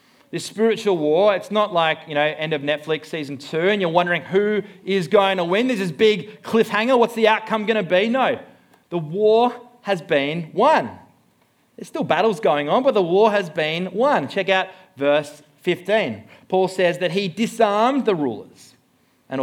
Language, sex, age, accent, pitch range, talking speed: English, male, 30-49, Australian, 150-210 Hz, 185 wpm